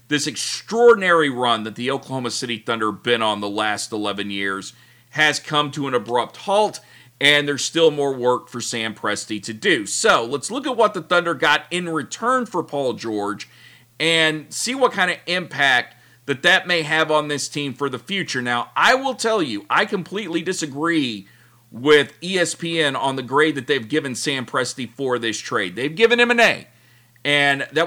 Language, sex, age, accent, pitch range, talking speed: English, male, 40-59, American, 125-170 Hz, 185 wpm